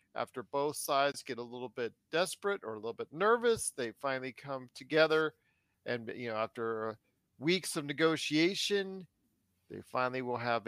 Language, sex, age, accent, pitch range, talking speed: English, male, 50-69, American, 120-175 Hz, 155 wpm